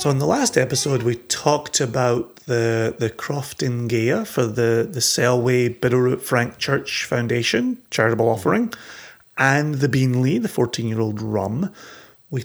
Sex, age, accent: male, 30-49, British